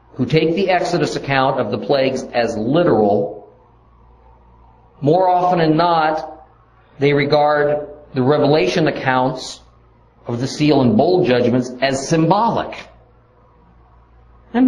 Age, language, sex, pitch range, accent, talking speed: 50-69, English, male, 110-150 Hz, American, 115 wpm